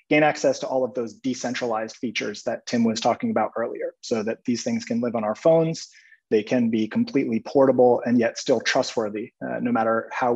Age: 30-49